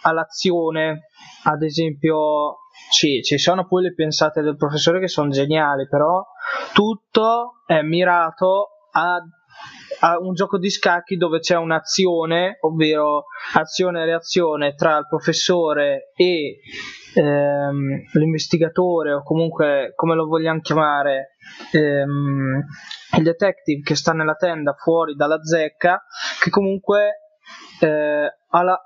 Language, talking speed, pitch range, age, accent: Italian, 115 wpm, 155-190 Hz, 20-39, native